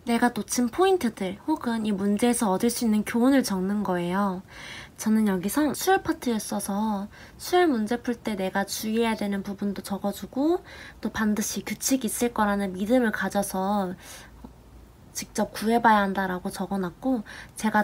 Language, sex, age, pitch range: Korean, female, 20-39, 195-245 Hz